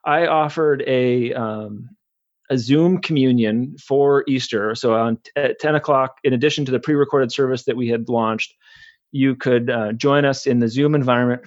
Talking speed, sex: 165 wpm, male